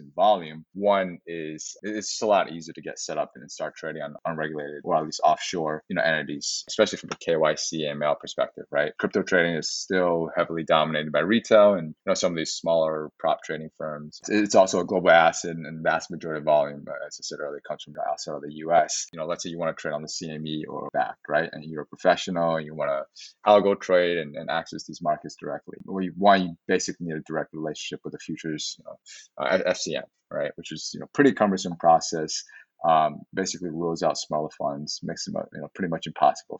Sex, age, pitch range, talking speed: male, 20-39, 75-90 Hz, 230 wpm